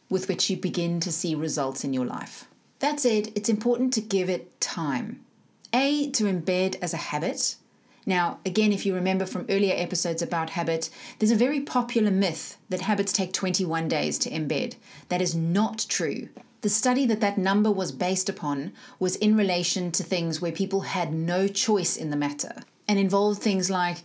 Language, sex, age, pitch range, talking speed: English, female, 30-49, 170-210 Hz, 185 wpm